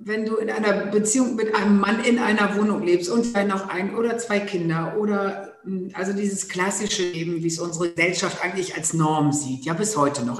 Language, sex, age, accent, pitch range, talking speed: German, female, 60-79, German, 145-205 Hz, 210 wpm